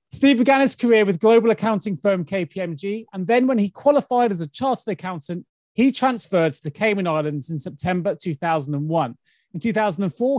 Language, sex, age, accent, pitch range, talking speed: English, male, 30-49, British, 170-230 Hz, 170 wpm